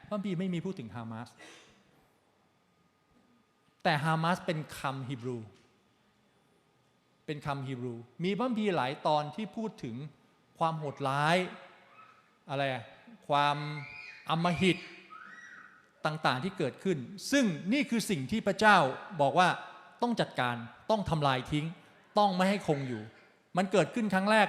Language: Thai